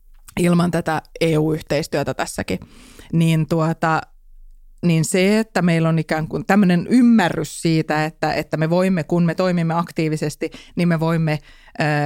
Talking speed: 140 wpm